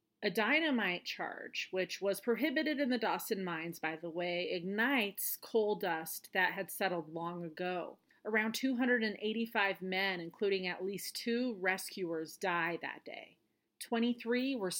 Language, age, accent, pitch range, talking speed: English, 30-49, American, 170-220 Hz, 140 wpm